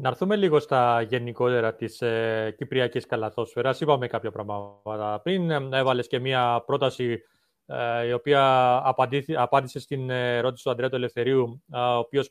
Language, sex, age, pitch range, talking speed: Greek, male, 30-49, 125-160 Hz, 130 wpm